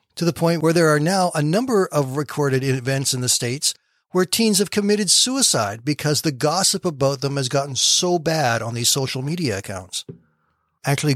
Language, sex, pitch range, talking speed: English, male, 140-195 Hz, 190 wpm